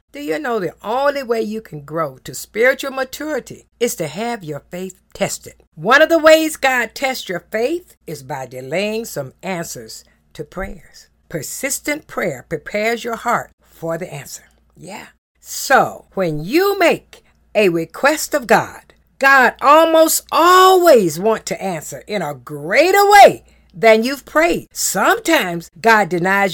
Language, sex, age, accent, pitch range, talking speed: English, female, 60-79, American, 180-295 Hz, 150 wpm